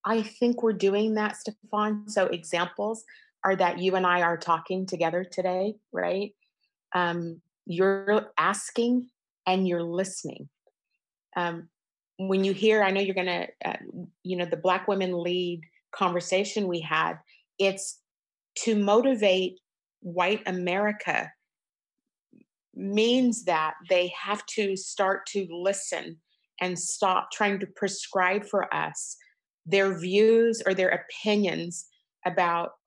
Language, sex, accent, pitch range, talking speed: English, female, American, 180-210 Hz, 125 wpm